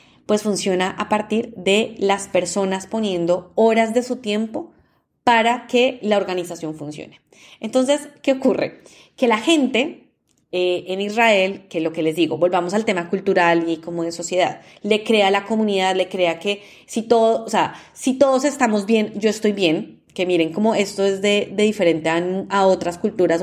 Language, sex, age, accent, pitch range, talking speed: Spanish, female, 20-39, Colombian, 180-225 Hz, 180 wpm